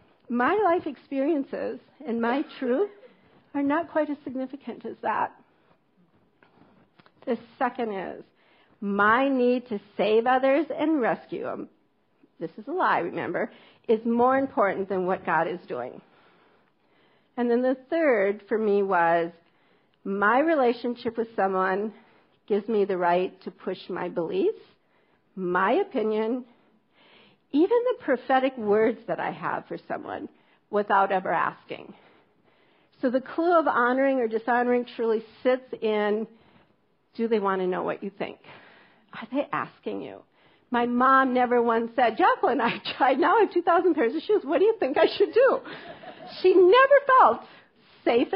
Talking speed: 145 wpm